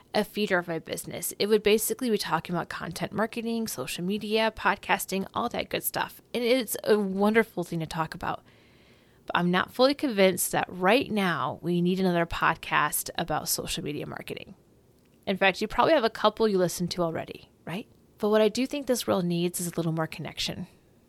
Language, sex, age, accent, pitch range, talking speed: English, female, 20-39, American, 175-215 Hz, 195 wpm